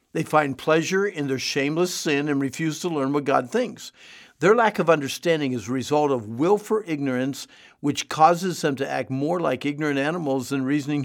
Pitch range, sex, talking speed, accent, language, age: 135-165 Hz, male, 195 wpm, American, English, 60-79